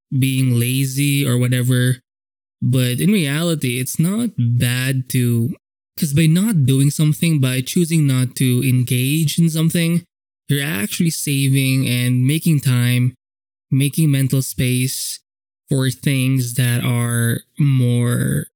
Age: 20-39